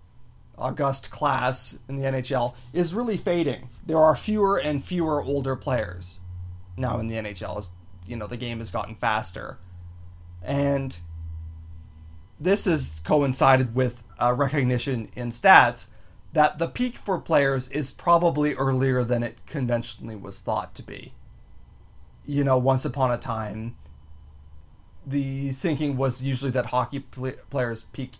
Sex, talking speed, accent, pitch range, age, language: male, 140 wpm, American, 95-135 Hz, 30-49, English